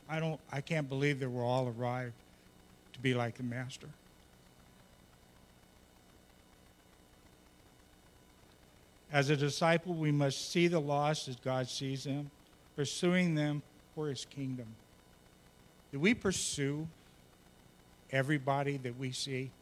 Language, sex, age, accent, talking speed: English, male, 50-69, American, 115 wpm